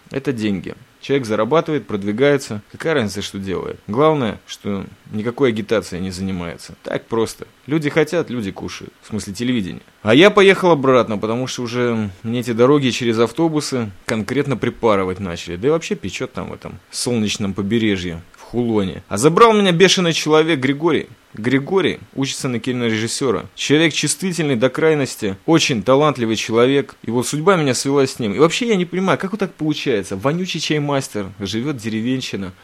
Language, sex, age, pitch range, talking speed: Russian, male, 20-39, 115-155 Hz, 155 wpm